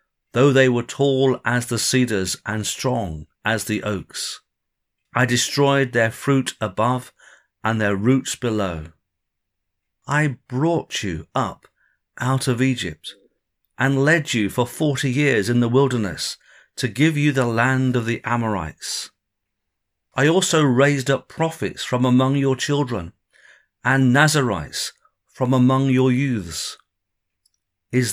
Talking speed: 130 wpm